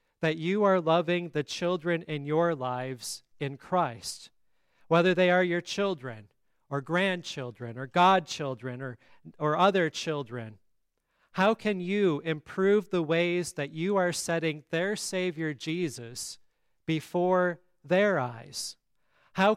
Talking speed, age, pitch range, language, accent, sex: 125 wpm, 40-59, 145-185 Hz, English, American, male